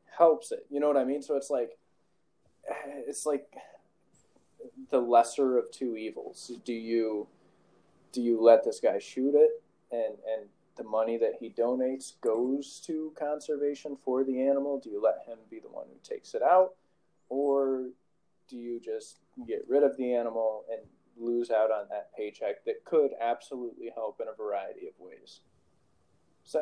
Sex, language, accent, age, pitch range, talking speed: male, English, American, 20-39, 115-180 Hz, 170 wpm